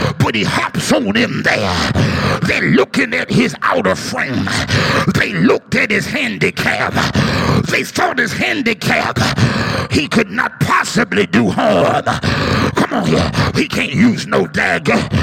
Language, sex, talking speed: English, male, 140 wpm